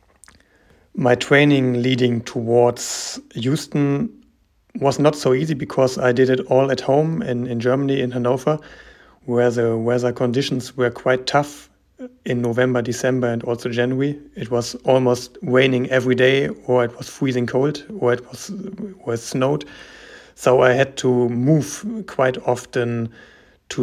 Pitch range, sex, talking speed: 120-135 Hz, male, 145 wpm